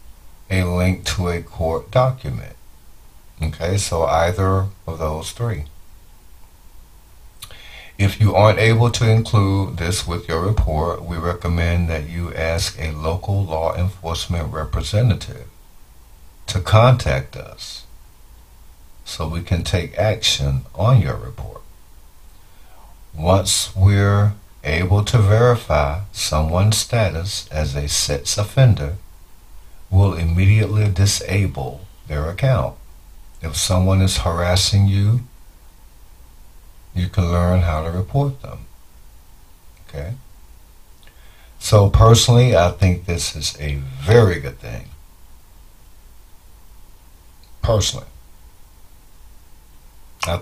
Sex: male